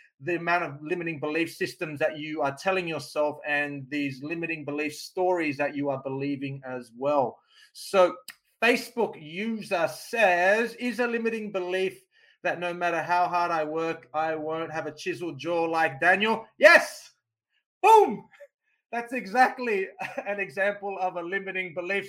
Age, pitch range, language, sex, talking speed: 30-49, 165-225 Hz, English, male, 150 wpm